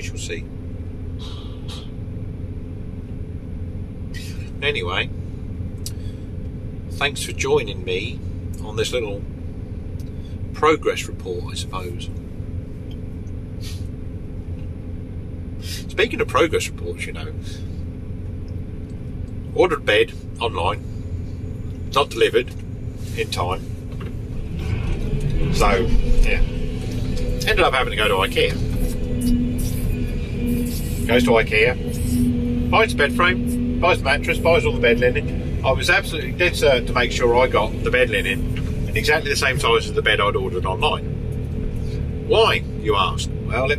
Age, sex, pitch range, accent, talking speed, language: 40-59, male, 90-115 Hz, British, 110 wpm, English